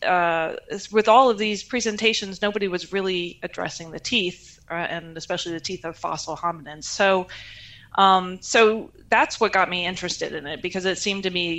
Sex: female